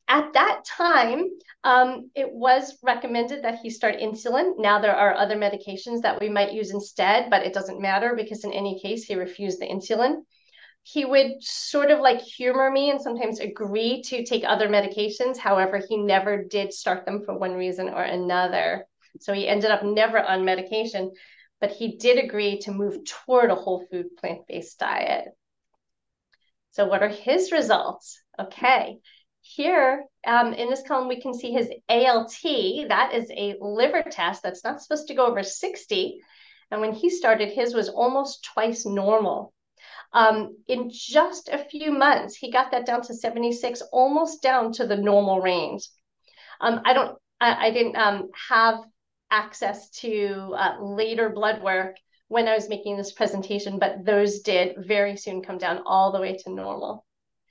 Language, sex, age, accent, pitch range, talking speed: English, female, 30-49, American, 200-255 Hz, 170 wpm